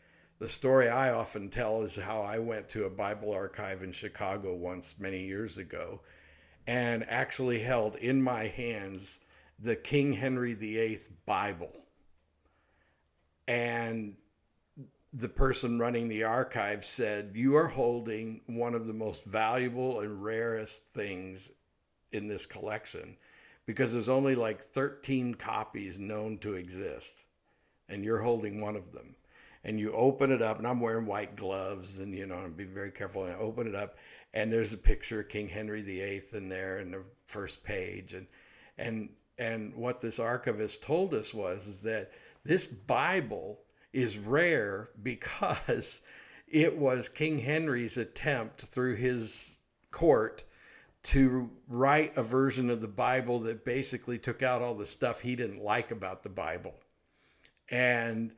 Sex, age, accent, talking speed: male, 60-79, American, 150 wpm